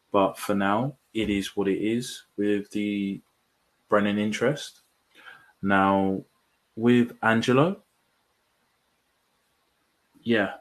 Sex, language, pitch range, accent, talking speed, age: male, English, 95-110 Hz, British, 90 wpm, 20-39